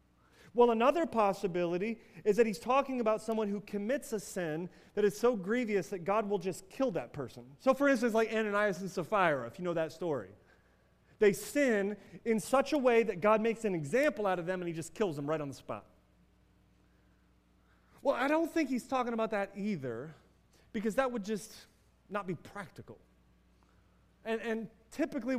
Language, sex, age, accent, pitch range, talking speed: English, male, 30-49, American, 170-235 Hz, 185 wpm